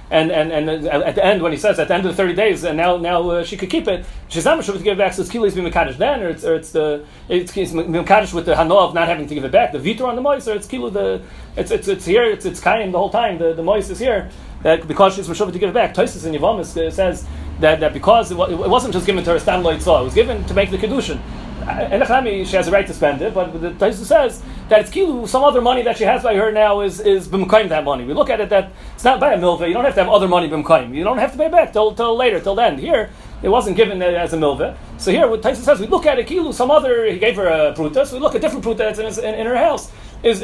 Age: 30-49